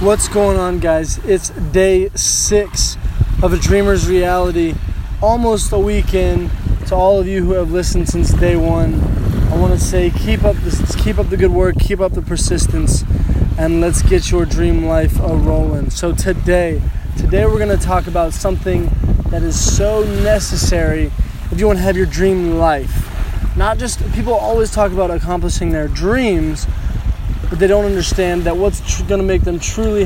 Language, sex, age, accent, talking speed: English, male, 20-39, American, 180 wpm